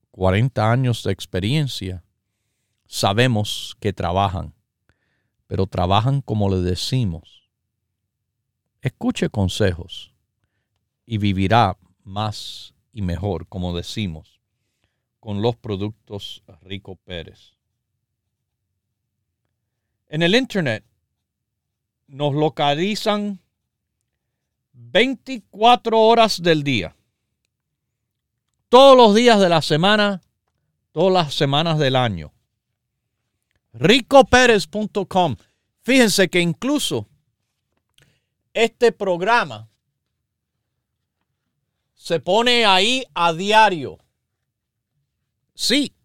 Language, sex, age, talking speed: Spanish, male, 50-69, 75 wpm